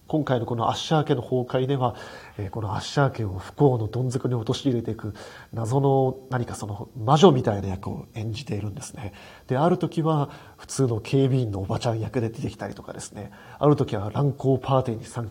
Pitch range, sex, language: 110-140 Hz, male, Japanese